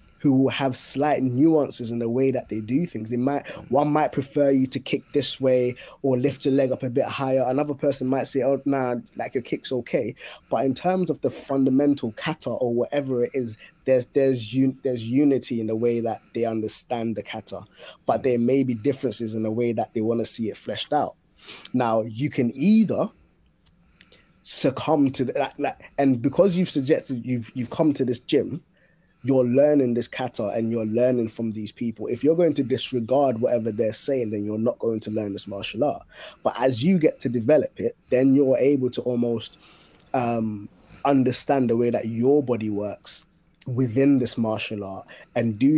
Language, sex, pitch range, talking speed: English, male, 115-140 Hz, 195 wpm